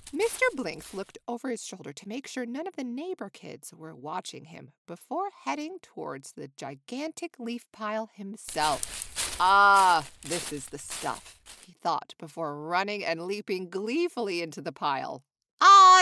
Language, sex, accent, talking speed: English, female, American, 155 wpm